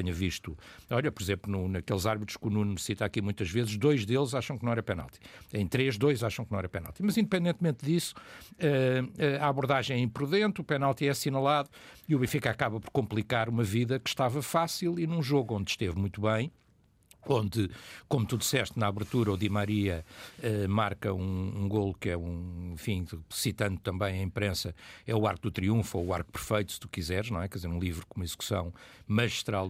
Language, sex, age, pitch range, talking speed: Portuguese, male, 60-79, 95-135 Hz, 210 wpm